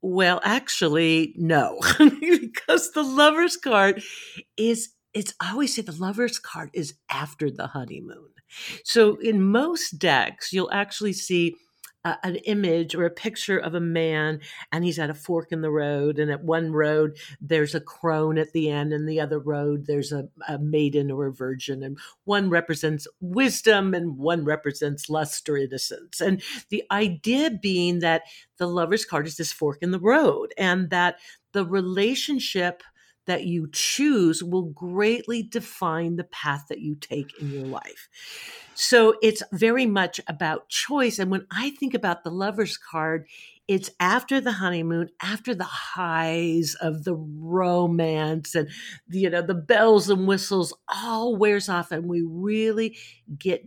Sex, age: female, 50-69